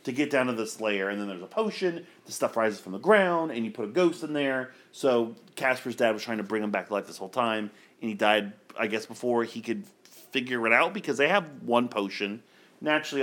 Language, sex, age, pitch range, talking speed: English, male, 30-49, 110-145 Hz, 250 wpm